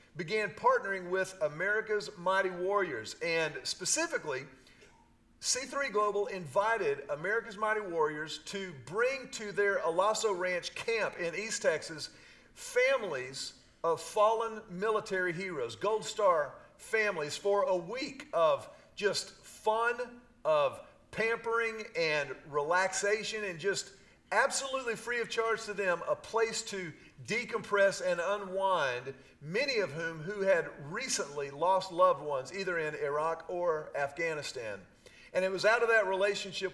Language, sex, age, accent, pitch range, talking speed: English, male, 40-59, American, 175-230 Hz, 125 wpm